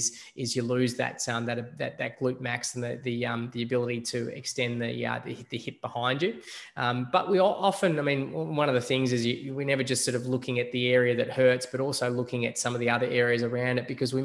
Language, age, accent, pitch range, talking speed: English, 20-39, Australian, 120-135 Hz, 260 wpm